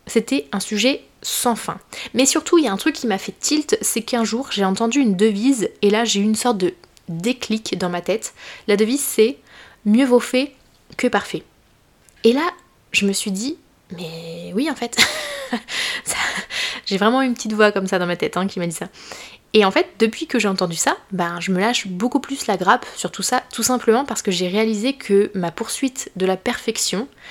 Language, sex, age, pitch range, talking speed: French, female, 20-39, 195-240 Hz, 215 wpm